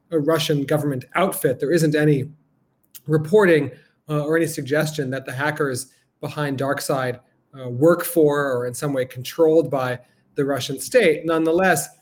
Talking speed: 150 wpm